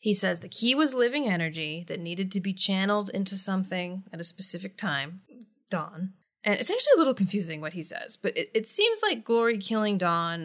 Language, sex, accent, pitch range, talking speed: English, female, American, 170-230 Hz, 205 wpm